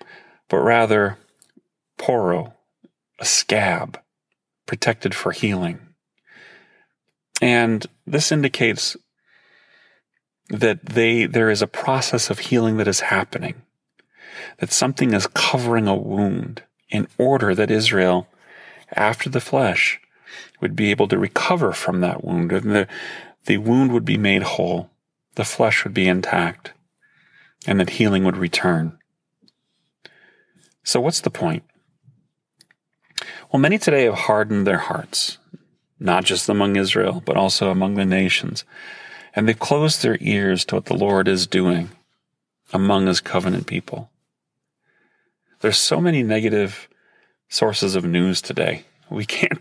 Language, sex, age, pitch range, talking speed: English, male, 40-59, 95-120 Hz, 130 wpm